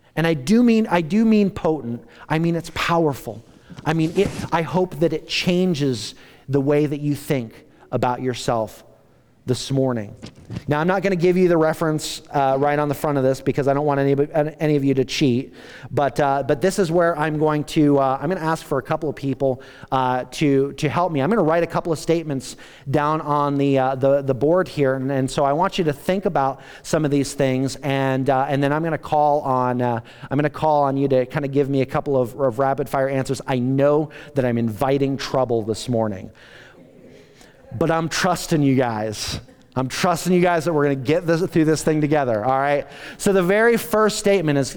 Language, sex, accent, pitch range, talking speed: English, male, American, 135-170 Hz, 220 wpm